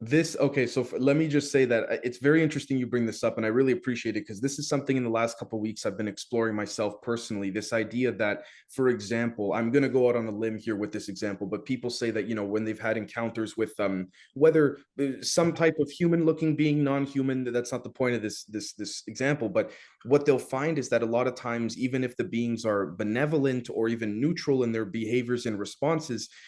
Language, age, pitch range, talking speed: English, 20-39, 110-145 Hz, 235 wpm